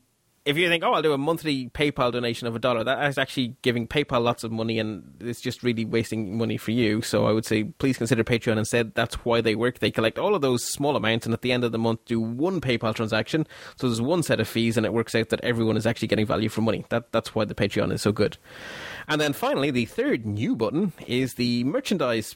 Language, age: English, 20-39